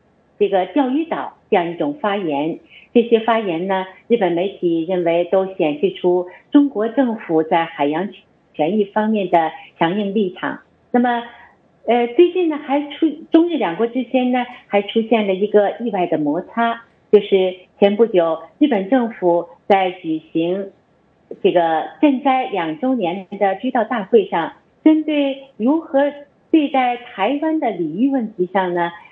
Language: English